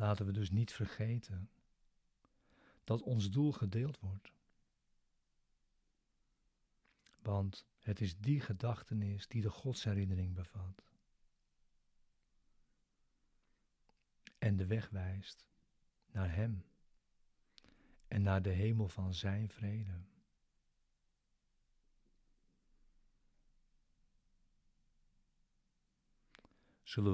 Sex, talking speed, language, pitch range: male, 75 wpm, Dutch, 95-115 Hz